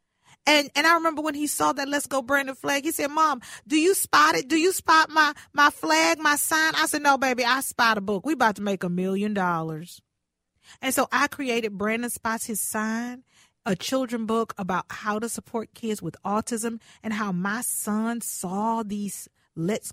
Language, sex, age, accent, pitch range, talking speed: English, female, 40-59, American, 205-285 Hz, 200 wpm